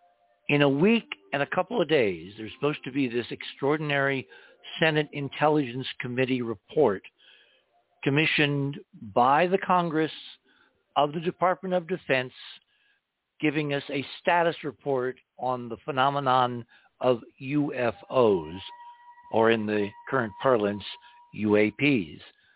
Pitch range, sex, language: 135-185 Hz, male, English